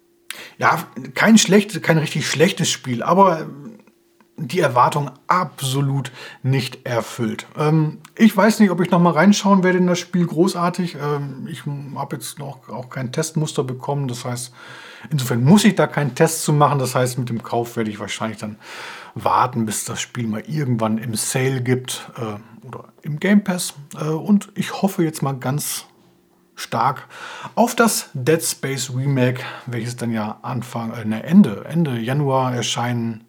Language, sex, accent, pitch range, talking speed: German, male, German, 120-195 Hz, 165 wpm